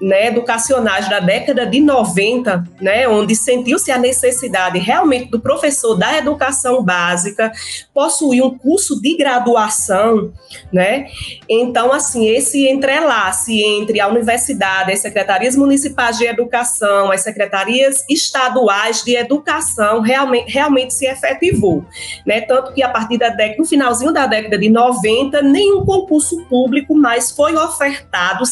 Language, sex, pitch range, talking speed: Portuguese, female, 220-280 Hz, 135 wpm